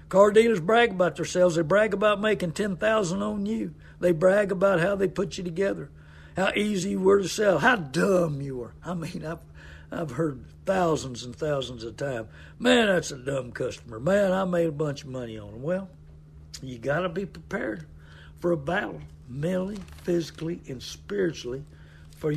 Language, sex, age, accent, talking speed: English, male, 60-79, American, 190 wpm